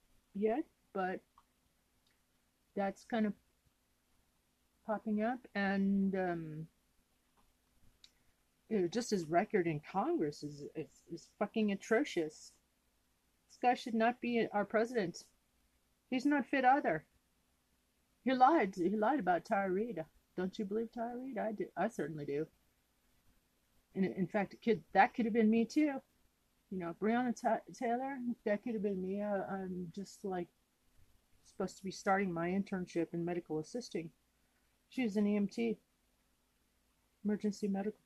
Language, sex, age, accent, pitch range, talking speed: English, female, 40-59, American, 170-230 Hz, 135 wpm